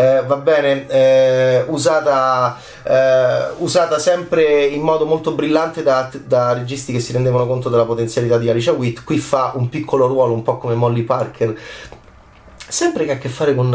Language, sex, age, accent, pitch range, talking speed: Italian, male, 30-49, native, 120-160 Hz, 175 wpm